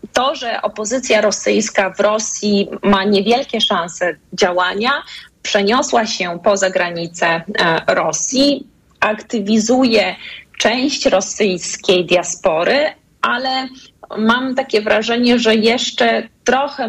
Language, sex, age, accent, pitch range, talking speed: Polish, female, 30-49, native, 185-235 Hz, 90 wpm